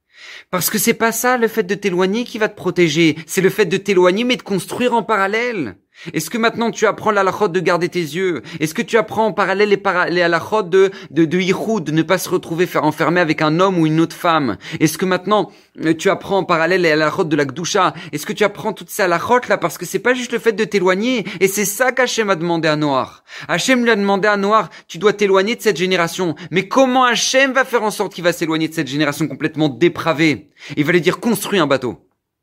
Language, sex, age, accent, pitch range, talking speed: French, male, 30-49, French, 155-210 Hz, 250 wpm